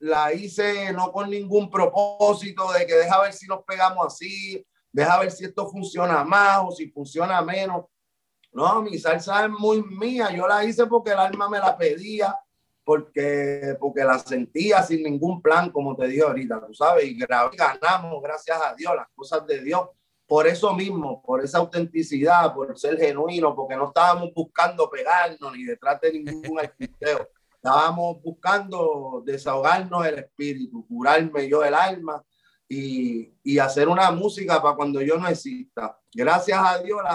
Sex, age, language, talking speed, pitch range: male, 30-49, Spanish, 170 wpm, 150-200 Hz